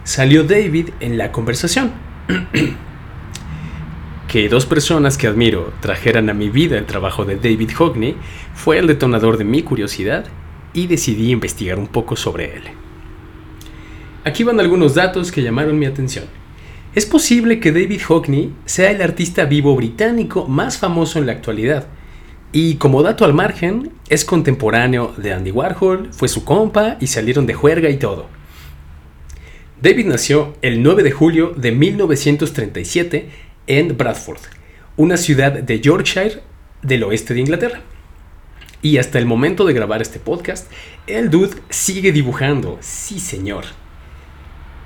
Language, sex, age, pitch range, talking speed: Spanish, male, 40-59, 90-150 Hz, 140 wpm